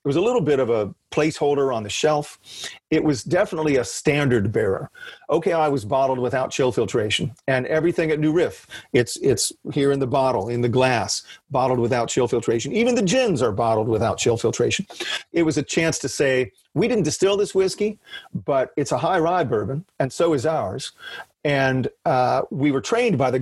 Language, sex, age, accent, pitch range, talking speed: English, male, 40-59, American, 125-160 Hz, 200 wpm